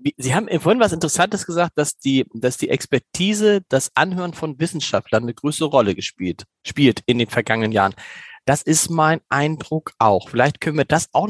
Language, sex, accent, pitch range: German, male, German, 135-190 Hz